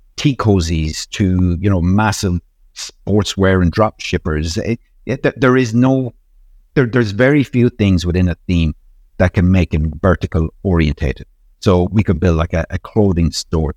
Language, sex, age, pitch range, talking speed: English, male, 50-69, 80-105 Hz, 165 wpm